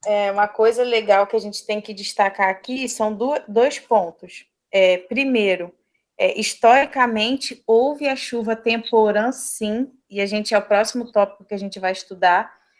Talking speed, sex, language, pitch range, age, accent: 150 wpm, female, Portuguese, 205-250 Hz, 20-39, Brazilian